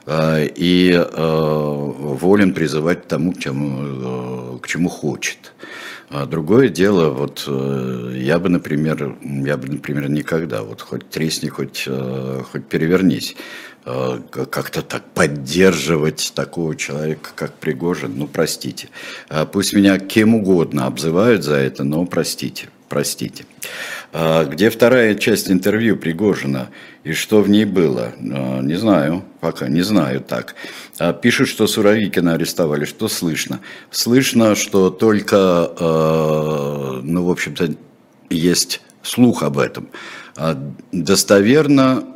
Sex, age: male, 60-79